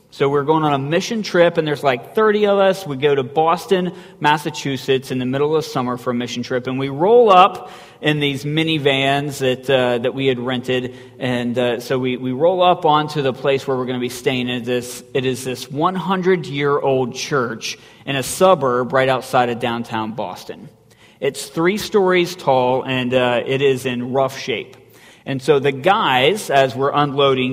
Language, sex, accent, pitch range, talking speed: English, male, American, 130-155 Hz, 195 wpm